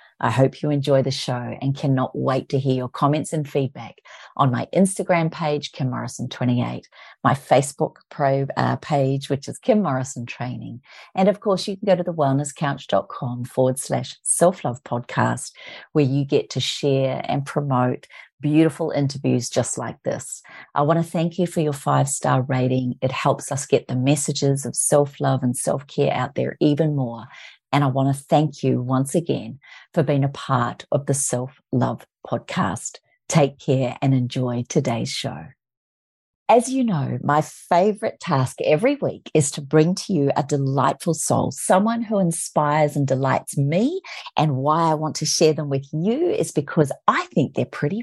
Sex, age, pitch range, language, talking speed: female, 40-59, 130-165 Hz, English, 170 wpm